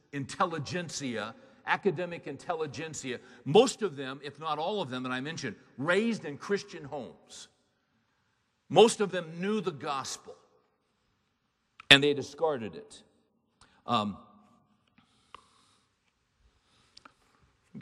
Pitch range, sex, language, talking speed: 125-165 Hz, male, English, 100 wpm